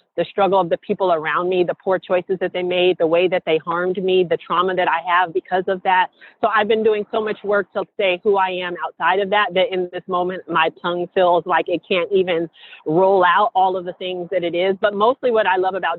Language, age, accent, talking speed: English, 30-49, American, 255 wpm